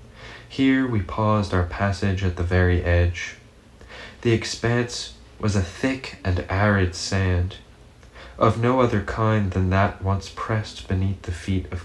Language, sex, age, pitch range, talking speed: English, male, 20-39, 90-105 Hz, 145 wpm